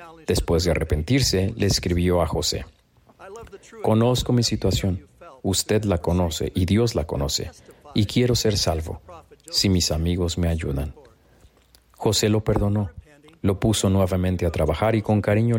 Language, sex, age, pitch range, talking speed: Spanish, male, 40-59, 90-115 Hz, 140 wpm